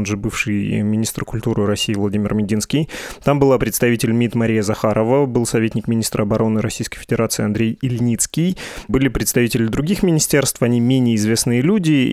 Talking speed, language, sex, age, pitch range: 150 wpm, Russian, male, 20-39, 110-130 Hz